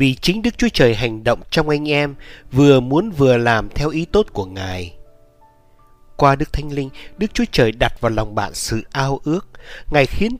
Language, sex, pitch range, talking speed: Vietnamese, male, 110-160 Hz, 200 wpm